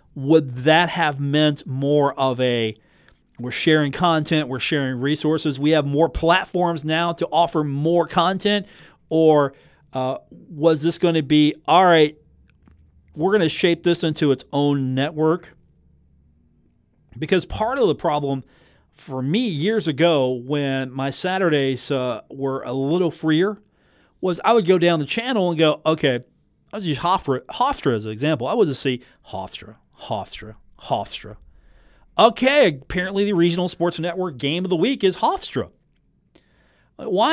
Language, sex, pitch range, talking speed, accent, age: English, male, 135-185 Hz, 155 wpm, American, 40-59